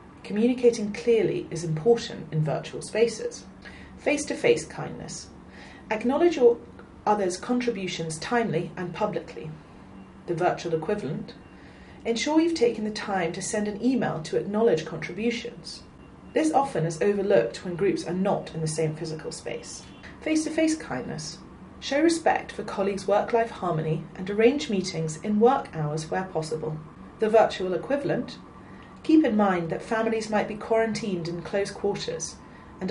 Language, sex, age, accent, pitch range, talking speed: English, female, 30-49, British, 165-235 Hz, 135 wpm